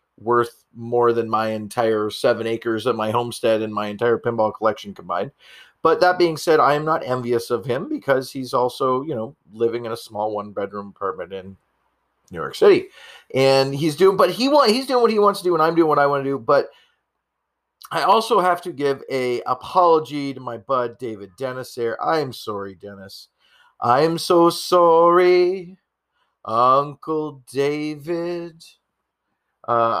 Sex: male